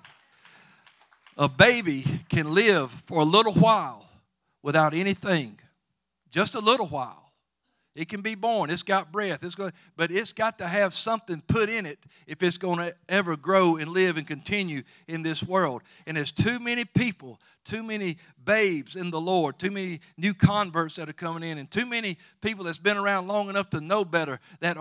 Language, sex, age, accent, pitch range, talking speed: English, male, 50-69, American, 155-200 Hz, 190 wpm